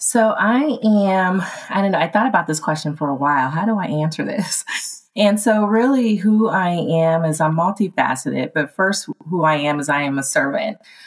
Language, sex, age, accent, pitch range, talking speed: English, female, 30-49, American, 150-175 Hz, 205 wpm